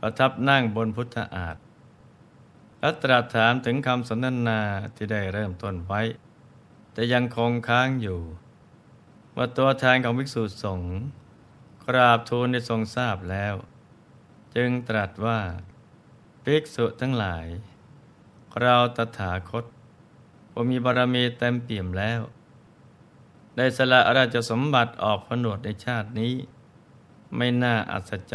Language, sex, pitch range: Thai, male, 110-130 Hz